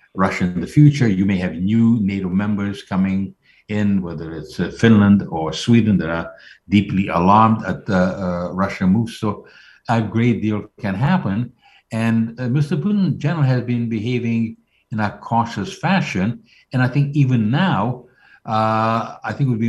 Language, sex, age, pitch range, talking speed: English, male, 60-79, 105-135 Hz, 175 wpm